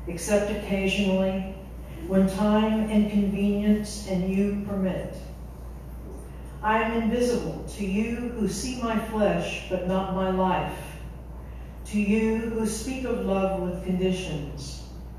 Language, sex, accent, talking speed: English, female, American, 120 wpm